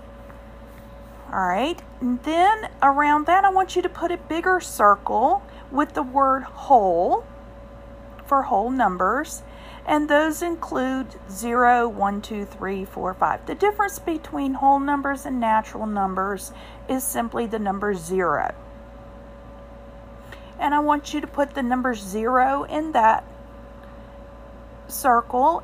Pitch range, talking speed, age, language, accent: 210-290 Hz, 125 wpm, 50-69, English, American